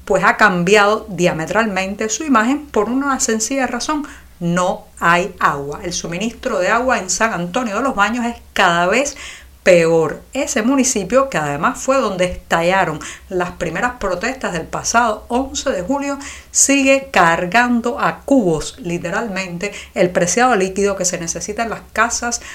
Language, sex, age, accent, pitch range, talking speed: Spanish, female, 50-69, American, 180-240 Hz, 150 wpm